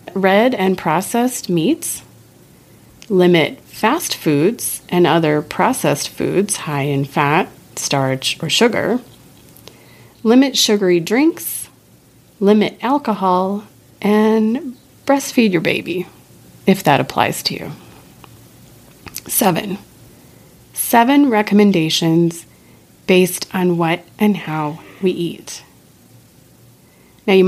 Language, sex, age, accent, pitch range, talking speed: English, female, 30-49, American, 165-200 Hz, 95 wpm